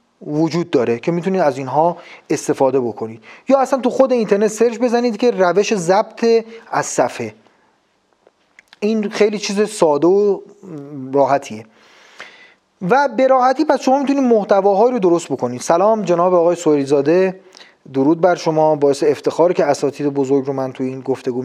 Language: Persian